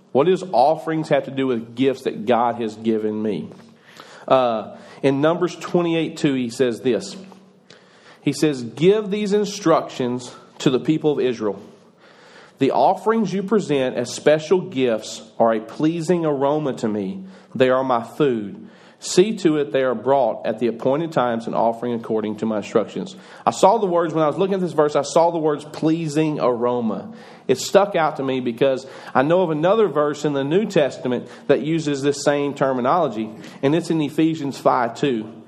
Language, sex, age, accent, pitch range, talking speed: English, male, 40-59, American, 120-165 Hz, 180 wpm